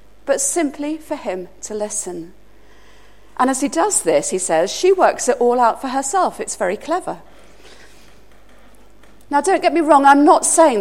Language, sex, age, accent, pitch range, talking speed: English, female, 40-59, British, 200-280 Hz, 170 wpm